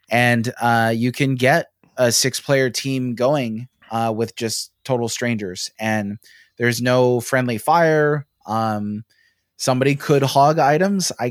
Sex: male